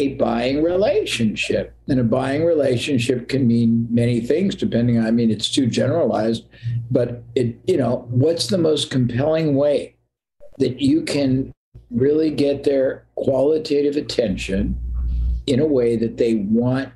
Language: English